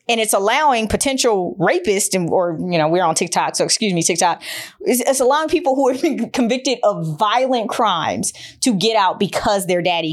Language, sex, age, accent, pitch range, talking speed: English, female, 20-39, American, 175-220 Hz, 195 wpm